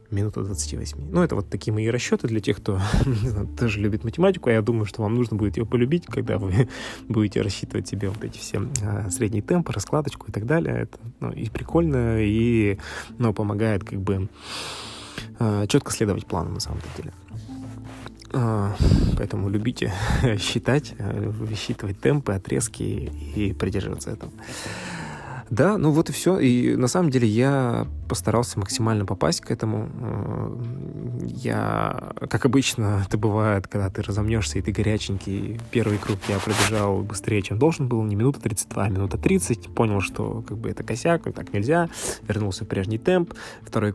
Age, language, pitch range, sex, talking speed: 20-39, Russian, 100-120 Hz, male, 165 wpm